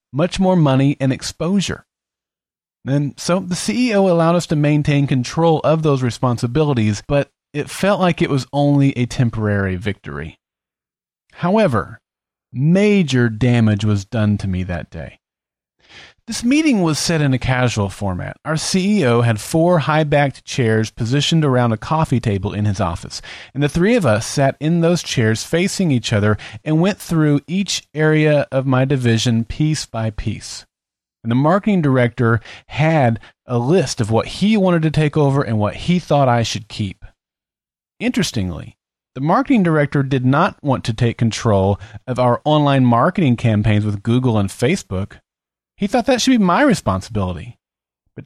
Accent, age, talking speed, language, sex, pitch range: American, 30-49, 160 wpm, English, male, 115-175 Hz